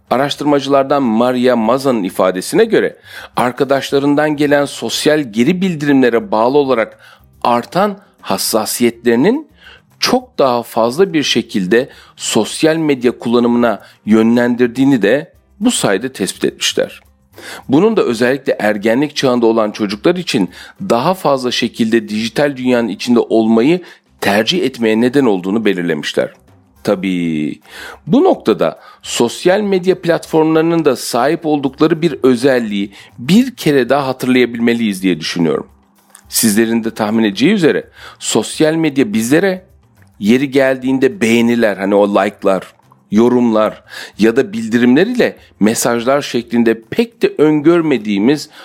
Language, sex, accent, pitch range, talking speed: Turkish, male, native, 110-145 Hz, 110 wpm